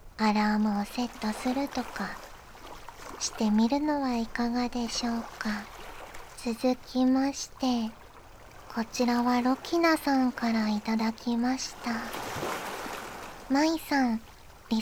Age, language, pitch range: 40-59, Japanese, 235-280 Hz